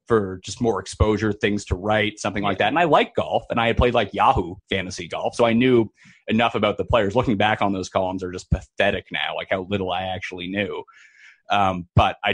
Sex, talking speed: male, 230 wpm